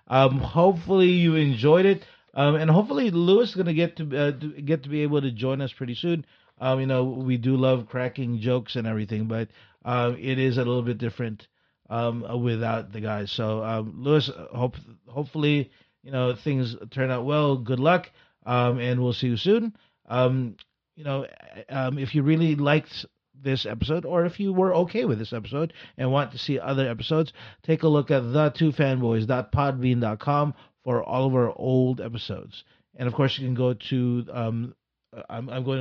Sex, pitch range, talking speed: male, 115-145 Hz, 200 wpm